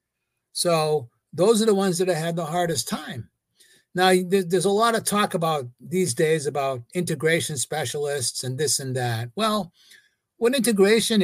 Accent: American